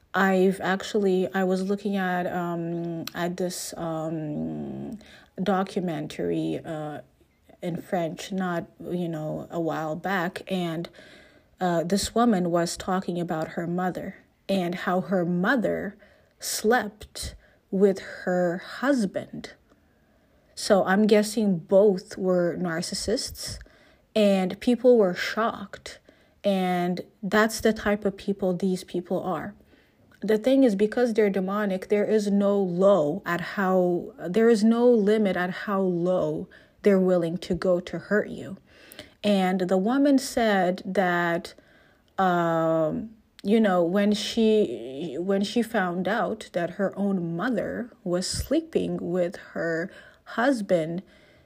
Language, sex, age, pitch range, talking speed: English, female, 30-49, 175-210 Hz, 120 wpm